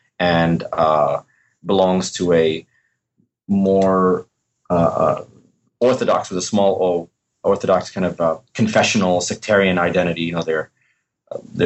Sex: male